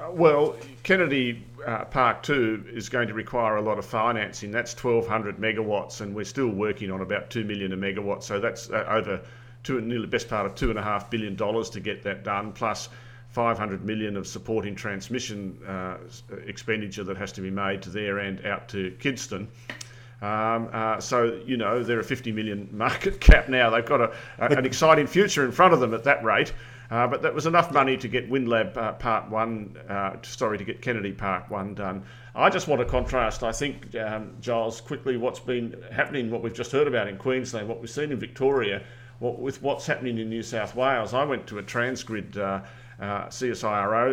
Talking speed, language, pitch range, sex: 200 wpm, English, 105-125 Hz, male